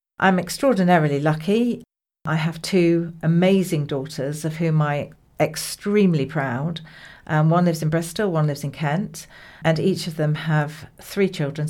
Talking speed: 150 wpm